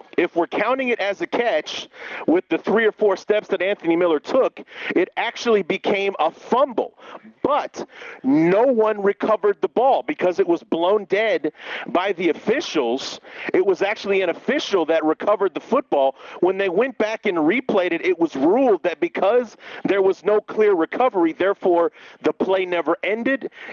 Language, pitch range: English, 170-220 Hz